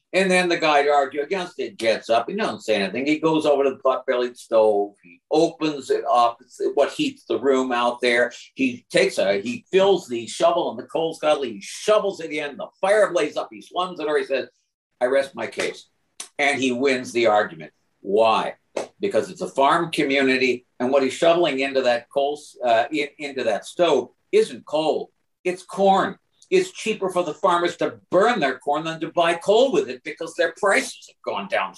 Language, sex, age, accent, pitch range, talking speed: English, male, 60-79, American, 140-195 Hz, 205 wpm